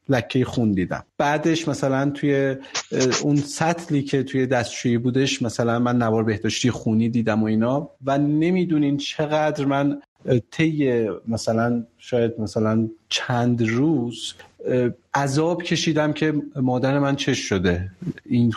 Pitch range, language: 115-150 Hz, Persian